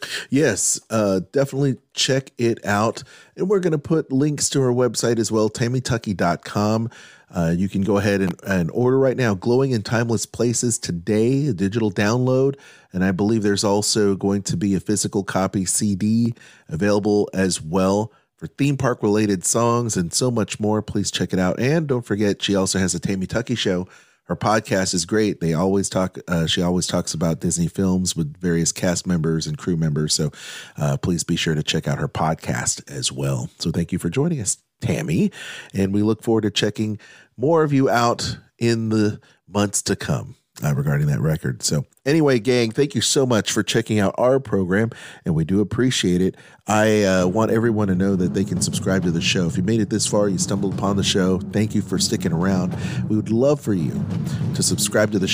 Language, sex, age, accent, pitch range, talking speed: English, male, 30-49, American, 95-125 Hz, 205 wpm